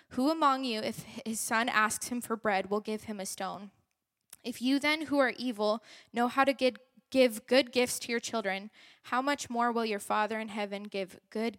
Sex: female